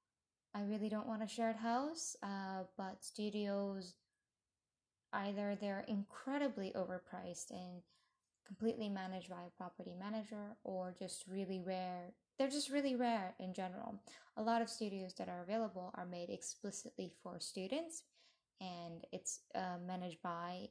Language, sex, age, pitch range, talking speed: English, female, 10-29, 180-225 Hz, 140 wpm